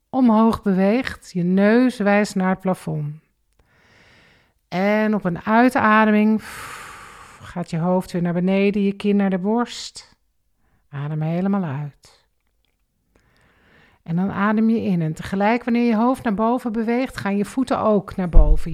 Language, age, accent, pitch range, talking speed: Dutch, 50-69, Dutch, 145-210 Hz, 145 wpm